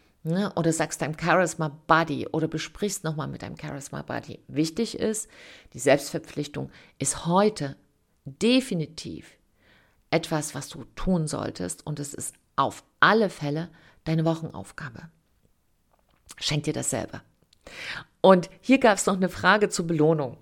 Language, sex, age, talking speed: German, female, 50-69, 125 wpm